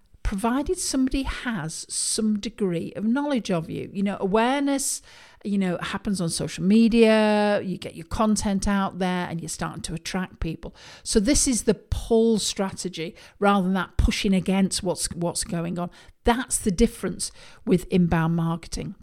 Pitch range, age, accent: 180-220 Hz, 50-69, British